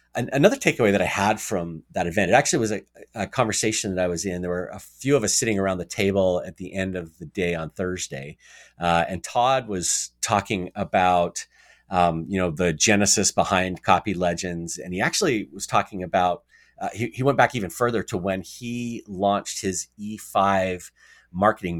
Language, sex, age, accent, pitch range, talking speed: English, male, 30-49, American, 90-105 Hz, 195 wpm